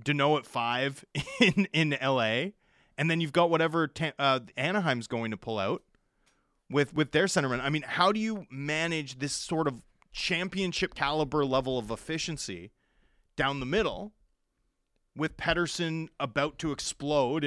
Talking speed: 160 wpm